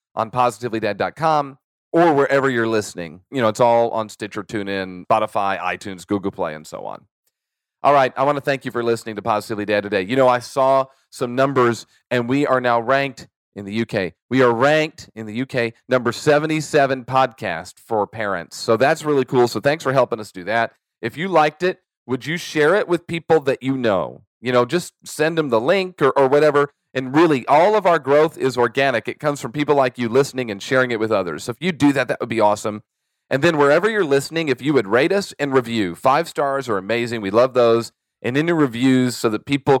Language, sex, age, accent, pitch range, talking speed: English, male, 40-59, American, 115-150 Hz, 220 wpm